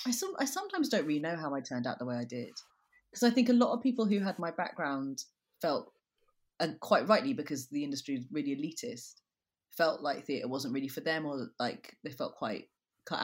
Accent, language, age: British, English, 30-49